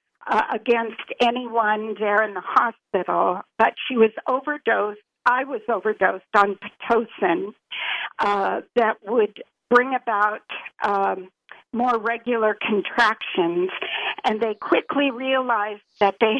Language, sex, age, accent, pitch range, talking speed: English, female, 50-69, American, 215-255 Hz, 115 wpm